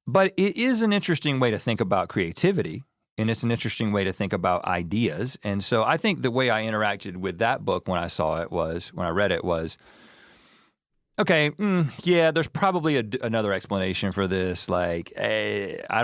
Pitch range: 90-120 Hz